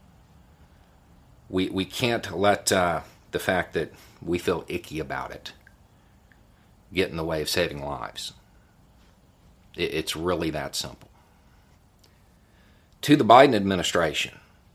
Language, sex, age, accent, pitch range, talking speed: English, male, 50-69, American, 85-100 Hz, 120 wpm